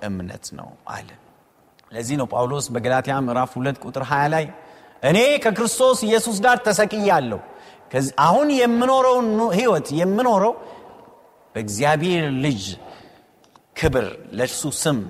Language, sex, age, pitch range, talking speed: Amharic, male, 30-49, 130-205 Hz, 95 wpm